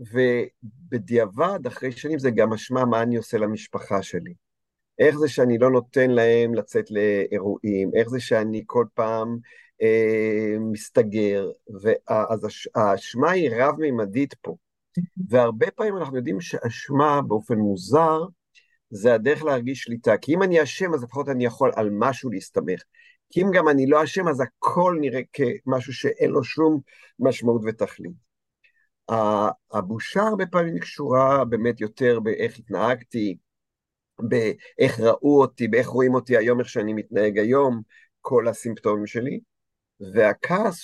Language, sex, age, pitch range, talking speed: Hebrew, male, 50-69, 110-140 Hz, 135 wpm